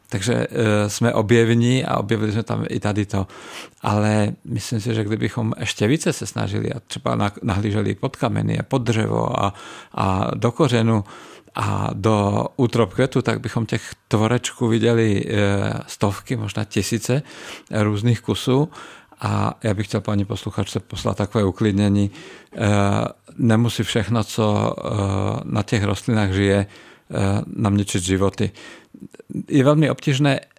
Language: Czech